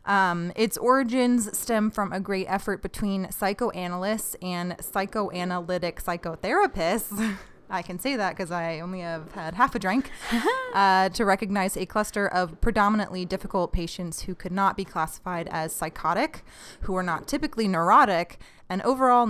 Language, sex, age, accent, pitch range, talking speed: English, female, 20-39, American, 180-220 Hz, 150 wpm